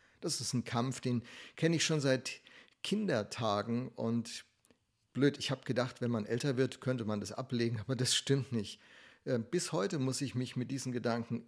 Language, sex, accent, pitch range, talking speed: German, male, German, 115-140 Hz, 185 wpm